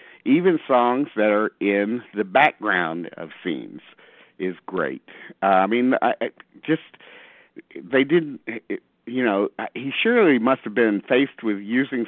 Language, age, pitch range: English, 50-69, 90-120 Hz